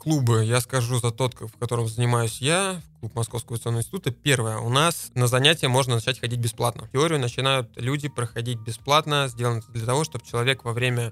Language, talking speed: Russian, 185 wpm